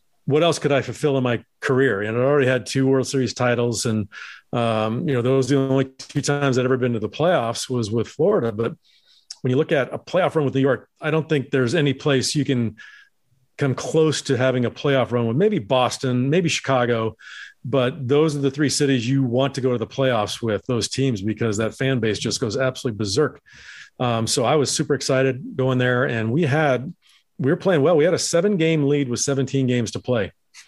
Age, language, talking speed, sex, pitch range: 40-59, English, 225 wpm, male, 120-145 Hz